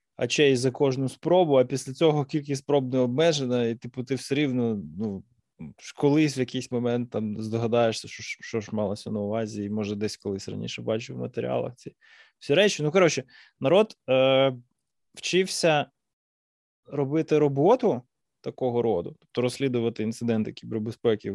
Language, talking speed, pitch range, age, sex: Ukrainian, 150 wpm, 115-145 Hz, 20-39, male